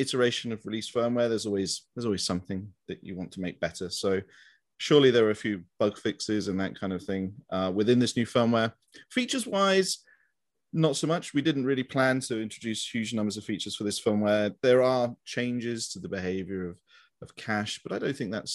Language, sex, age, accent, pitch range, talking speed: English, male, 30-49, British, 95-125 Hz, 210 wpm